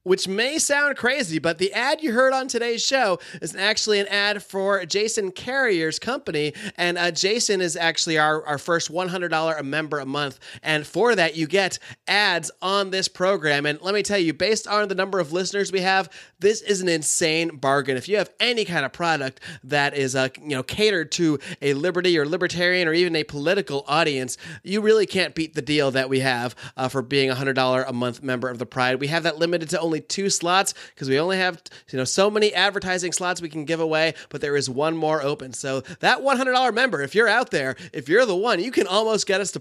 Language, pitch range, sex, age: English, 145-195 Hz, male, 30-49